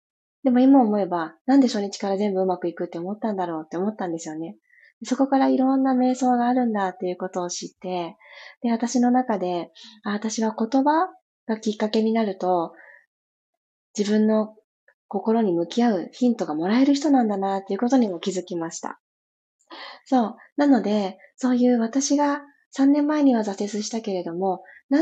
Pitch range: 185-255 Hz